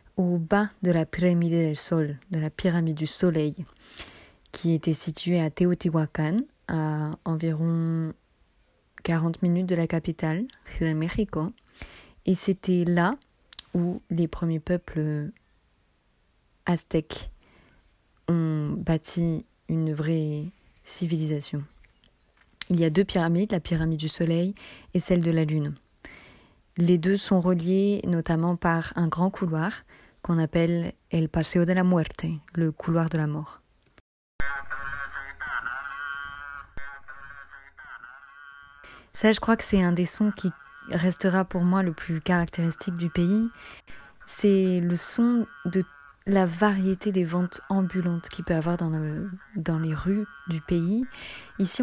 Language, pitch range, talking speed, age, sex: French, 160-185 Hz, 135 wpm, 20-39, female